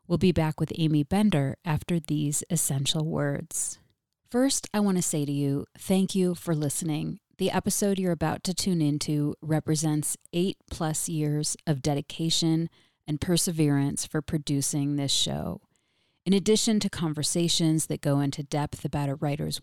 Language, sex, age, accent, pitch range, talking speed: English, female, 30-49, American, 145-175 Hz, 155 wpm